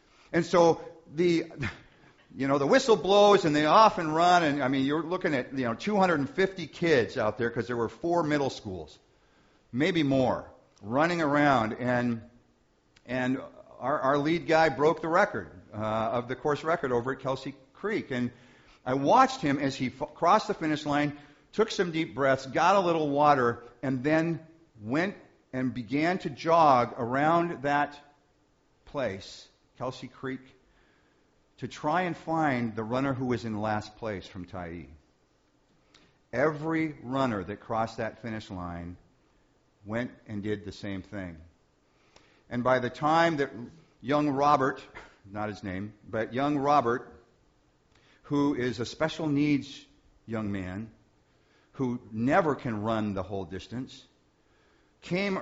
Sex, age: male, 50-69